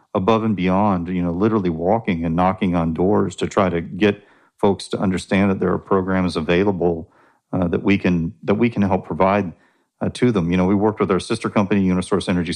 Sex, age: male, 40-59